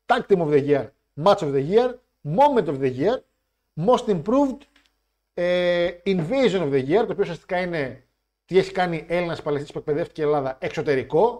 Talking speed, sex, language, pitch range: 175 wpm, male, Greek, 140-220 Hz